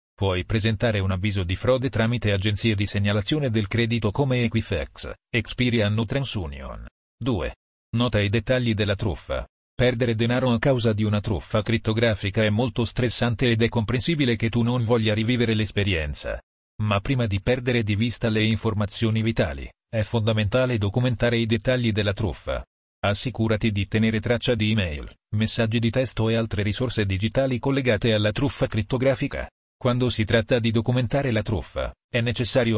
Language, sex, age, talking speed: Italian, male, 40-59, 155 wpm